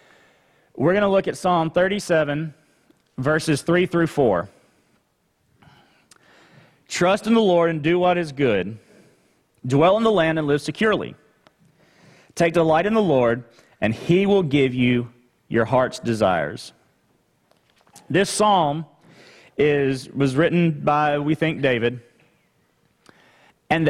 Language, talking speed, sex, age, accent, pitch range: English, 125 wpm, male, 40-59, American, 135-170 Hz